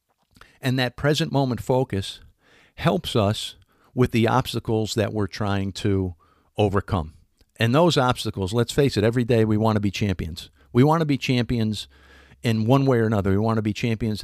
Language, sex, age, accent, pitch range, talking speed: English, male, 50-69, American, 100-125 Hz, 180 wpm